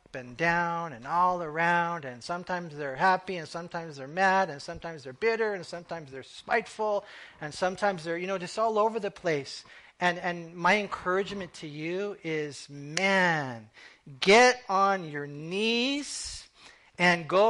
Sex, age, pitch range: male, 40-59, 165-210 Hz